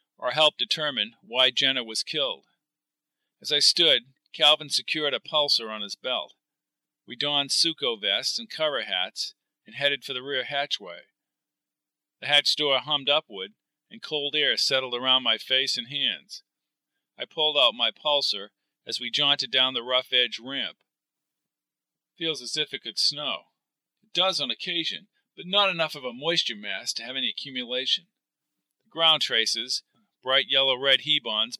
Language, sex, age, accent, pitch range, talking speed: English, male, 50-69, American, 125-155 Hz, 160 wpm